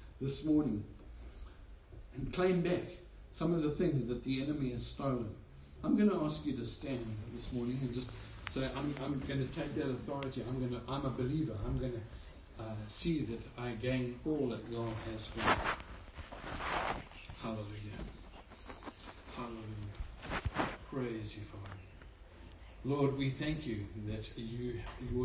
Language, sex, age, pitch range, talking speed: English, male, 60-79, 115-140 Hz, 150 wpm